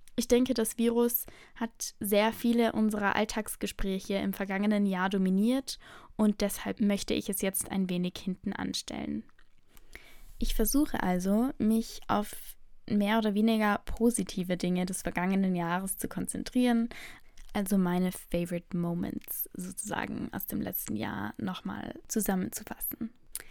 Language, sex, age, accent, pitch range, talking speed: German, female, 10-29, German, 200-245 Hz, 125 wpm